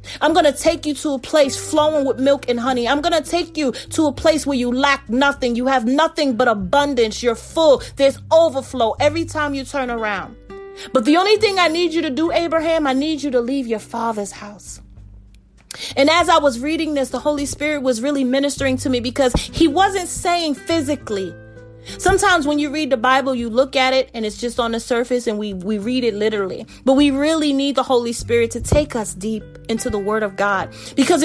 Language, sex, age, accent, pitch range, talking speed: English, female, 30-49, American, 235-310 Hz, 220 wpm